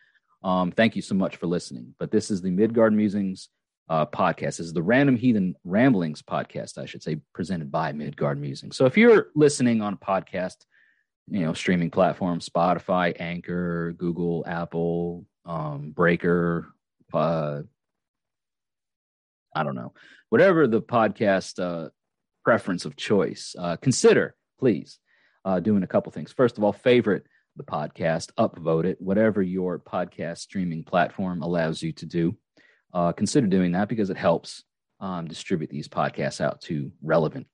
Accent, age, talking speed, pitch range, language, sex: American, 30-49, 155 wpm, 85-110 Hz, English, male